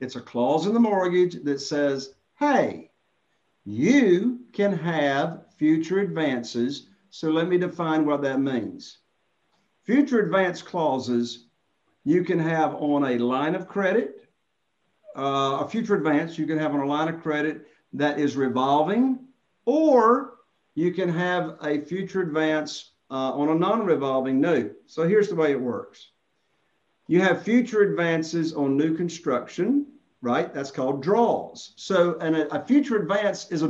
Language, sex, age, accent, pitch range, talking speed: English, male, 50-69, American, 140-190 Hz, 150 wpm